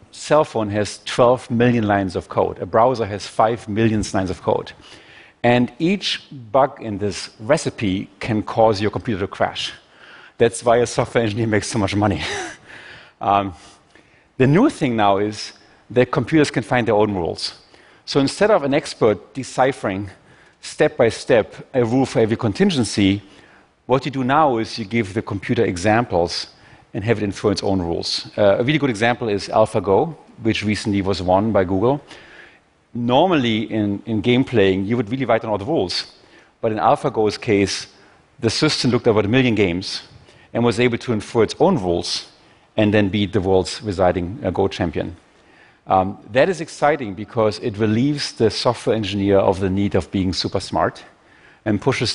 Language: Chinese